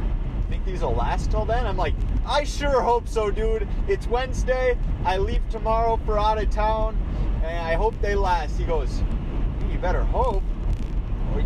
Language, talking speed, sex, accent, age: English, 180 wpm, male, American, 30-49